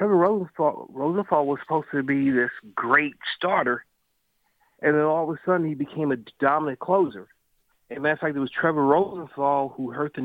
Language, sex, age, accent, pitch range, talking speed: English, male, 40-59, American, 120-150 Hz, 185 wpm